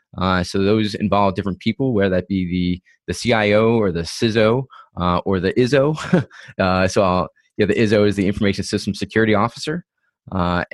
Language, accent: English, American